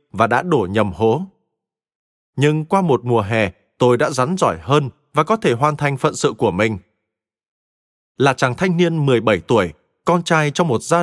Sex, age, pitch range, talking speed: male, 20-39, 120-165 Hz, 190 wpm